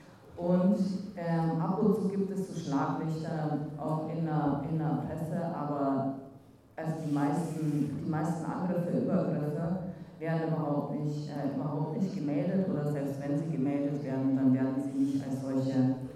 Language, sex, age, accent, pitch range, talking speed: German, female, 40-59, German, 150-205 Hz, 135 wpm